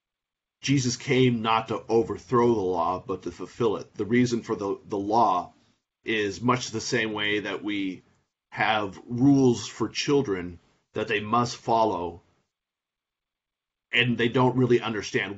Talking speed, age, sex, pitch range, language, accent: 145 wpm, 40-59, male, 100-120 Hz, English, American